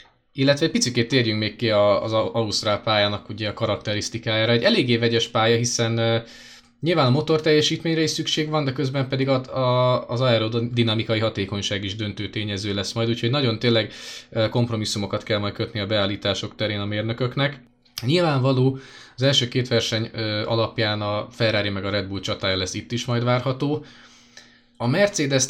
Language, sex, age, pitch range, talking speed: Hungarian, male, 20-39, 105-120 Hz, 160 wpm